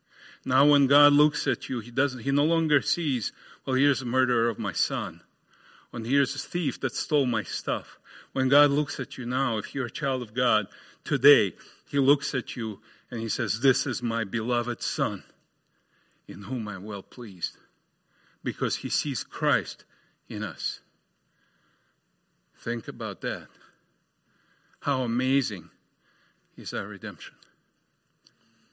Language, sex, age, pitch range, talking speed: English, male, 50-69, 110-135 Hz, 150 wpm